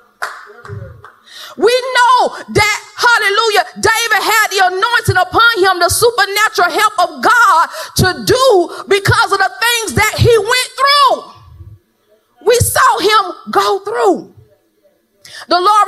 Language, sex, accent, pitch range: English, female, American, 315-405 Hz